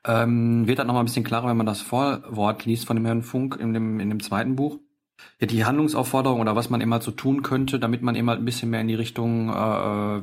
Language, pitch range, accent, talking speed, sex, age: German, 105-120 Hz, German, 265 wpm, male, 40-59